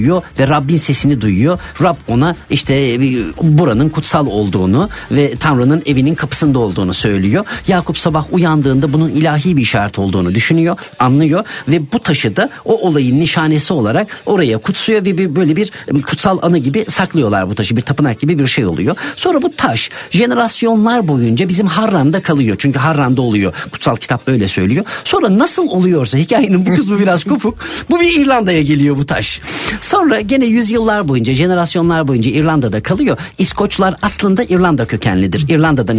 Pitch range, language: 125-185 Hz, Turkish